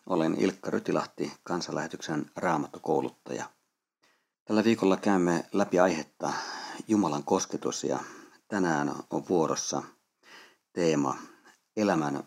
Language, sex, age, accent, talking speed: Finnish, male, 50-69, native, 90 wpm